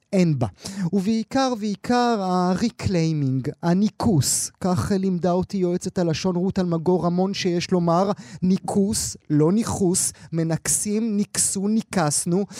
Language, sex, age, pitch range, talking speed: Hebrew, male, 30-49, 160-195 Hz, 100 wpm